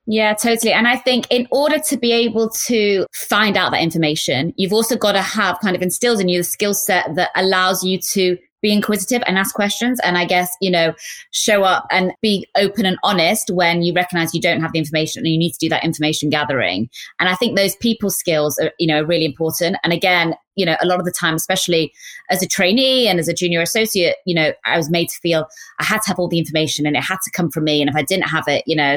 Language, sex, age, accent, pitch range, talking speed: English, female, 20-39, British, 155-195 Hz, 255 wpm